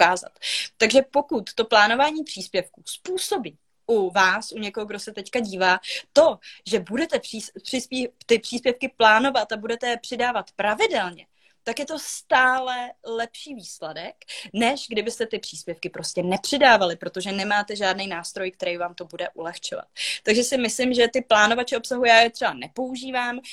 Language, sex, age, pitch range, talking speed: Slovak, female, 20-39, 185-230 Hz, 155 wpm